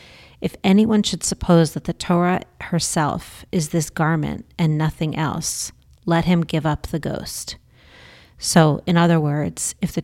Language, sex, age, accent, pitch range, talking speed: English, female, 40-59, American, 155-175 Hz, 155 wpm